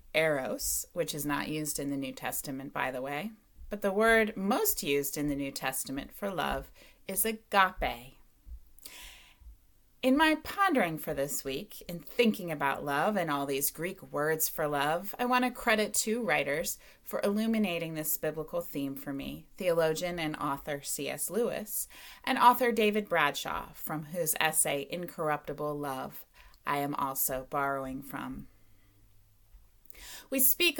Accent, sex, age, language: American, female, 30-49, English